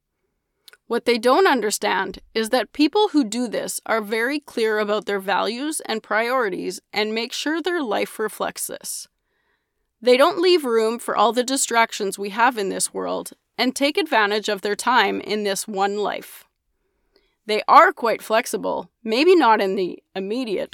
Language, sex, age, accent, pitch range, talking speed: English, female, 20-39, American, 210-285 Hz, 165 wpm